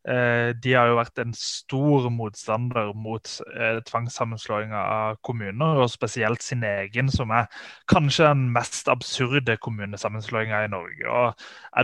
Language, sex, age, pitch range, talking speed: English, male, 20-39, 120-145 Hz, 145 wpm